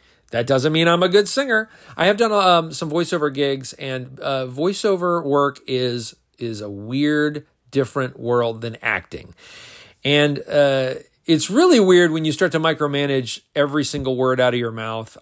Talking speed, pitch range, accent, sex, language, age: 170 wpm, 130-180 Hz, American, male, English, 40-59